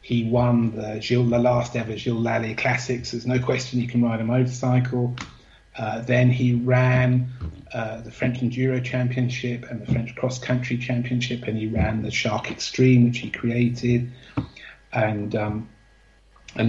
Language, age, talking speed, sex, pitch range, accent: English, 40-59, 160 wpm, male, 110-125 Hz, British